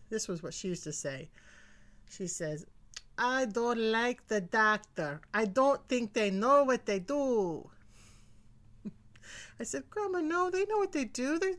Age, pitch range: 30-49, 155-220 Hz